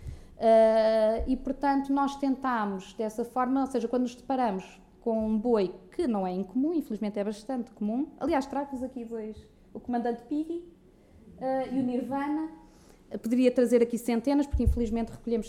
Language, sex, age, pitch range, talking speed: Portuguese, female, 20-39, 220-270 Hz, 165 wpm